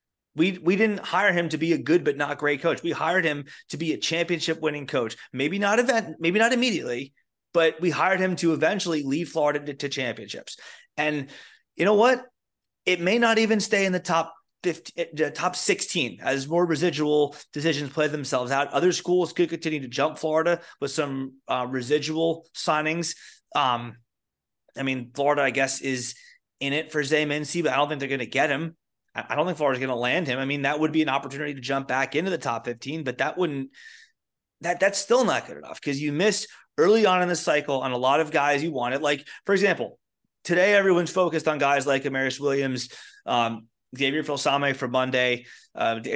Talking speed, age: 205 wpm, 30-49